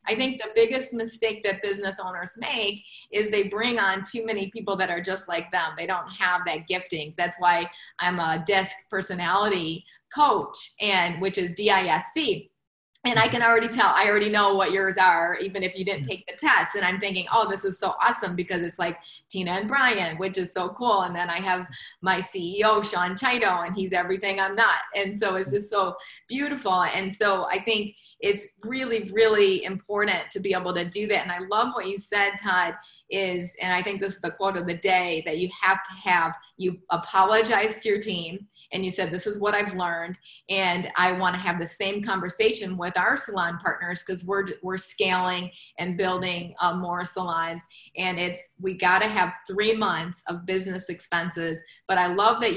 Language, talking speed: English, 205 wpm